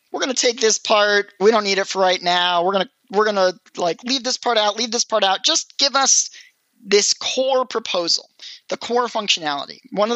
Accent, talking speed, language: American, 230 wpm, English